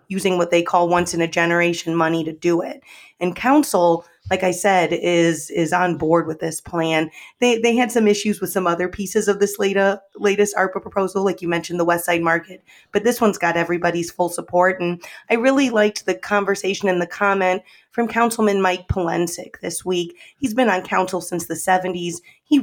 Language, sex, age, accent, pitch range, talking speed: English, female, 30-49, American, 170-205 Hz, 195 wpm